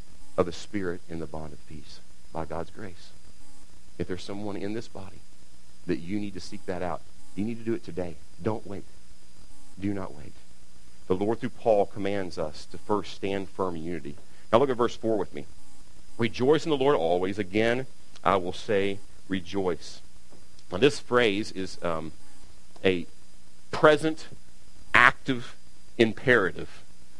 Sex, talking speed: male, 160 wpm